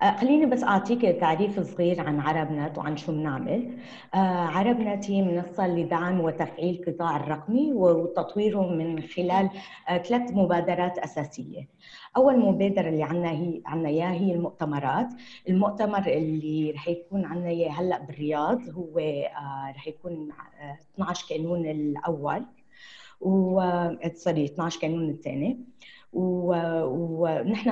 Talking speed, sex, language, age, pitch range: 110 wpm, female, Arabic, 20-39, 160-195 Hz